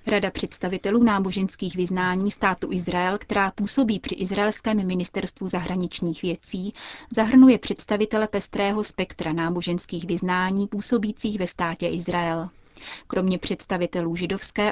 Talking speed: 105 wpm